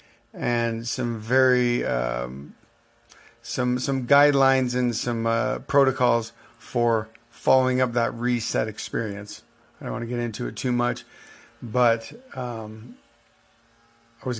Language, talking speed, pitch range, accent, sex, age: English, 125 wpm, 115-130 Hz, American, male, 40-59